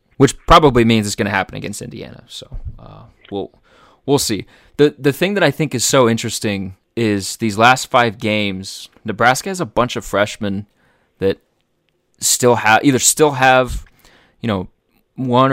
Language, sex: English, male